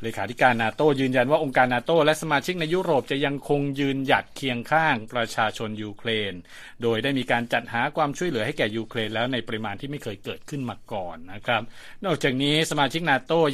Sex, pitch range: male, 110-140 Hz